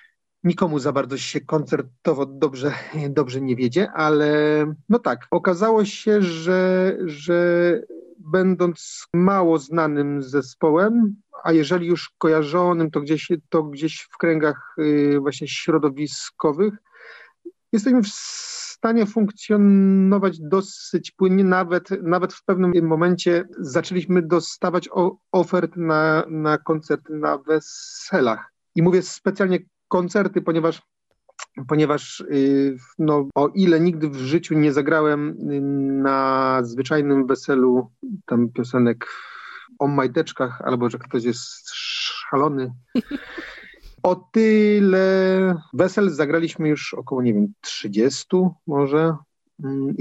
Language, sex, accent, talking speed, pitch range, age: Polish, male, native, 110 wpm, 145-185 Hz, 40-59